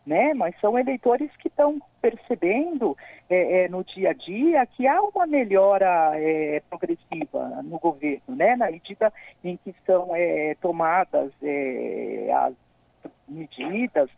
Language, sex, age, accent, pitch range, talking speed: Portuguese, female, 50-69, Brazilian, 155-255 Hz, 115 wpm